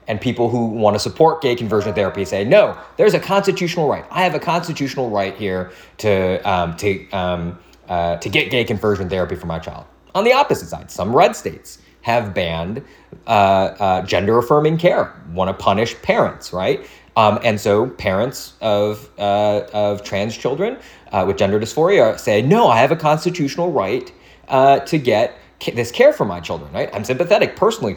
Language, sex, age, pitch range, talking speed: English, male, 30-49, 105-170 Hz, 180 wpm